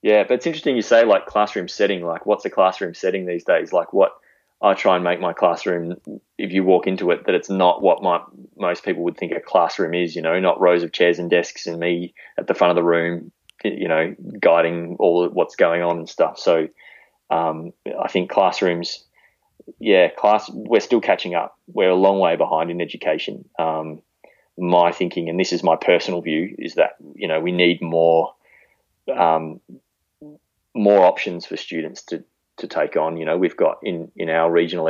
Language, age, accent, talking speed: English, 20-39, Australian, 200 wpm